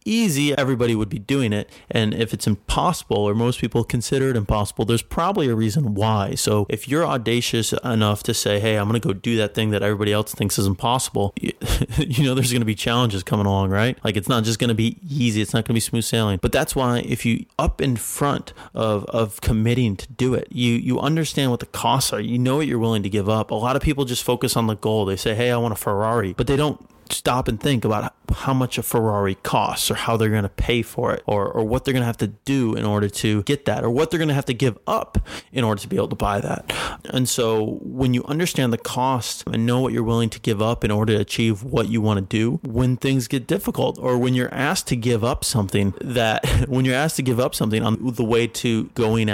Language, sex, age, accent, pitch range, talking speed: English, male, 30-49, American, 110-130 Hz, 260 wpm